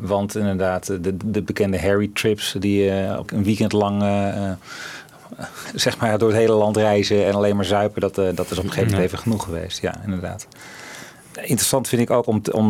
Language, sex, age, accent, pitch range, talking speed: Dutch, male, 40-59, Dutch, 95-105 Hz, 215 wpm